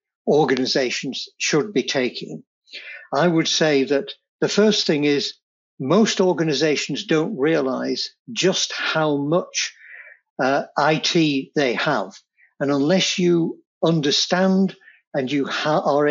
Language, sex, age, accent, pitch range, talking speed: English, male, 60-79, British, 145-205 Hz, 110 wpm